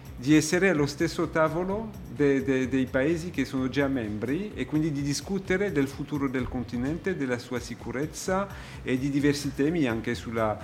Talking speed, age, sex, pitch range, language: 160 wpm, 50-69, male, 120-150 Hz, Italian